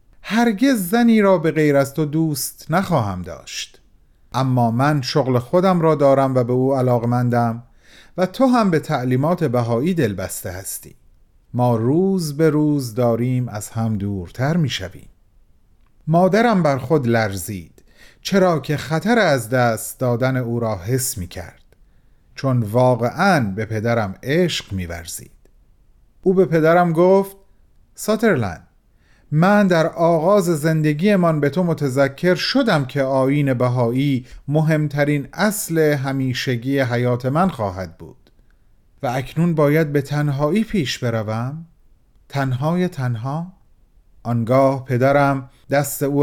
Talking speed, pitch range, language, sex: 125 wpm, 115-160 Hz, Persian, male